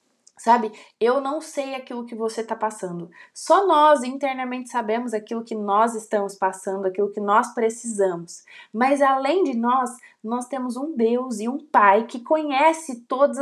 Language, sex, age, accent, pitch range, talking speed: Portuguese, female, 20-39, Brazilian, 220-290 Hz, 160 wpm